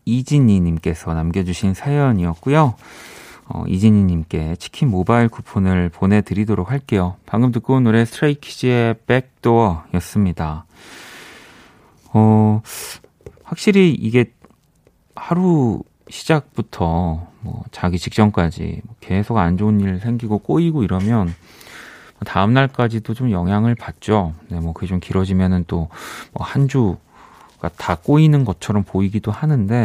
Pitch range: 90-120 Hz